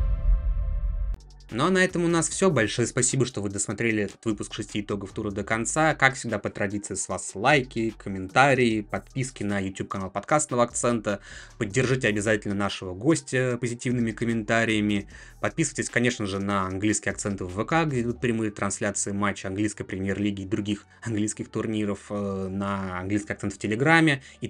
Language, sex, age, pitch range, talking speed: Russian, male, 20-39, 100-120 Hz, 155 wpm